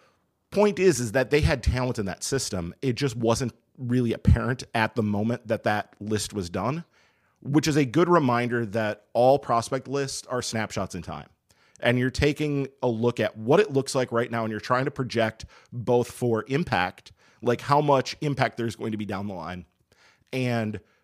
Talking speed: 195 wpm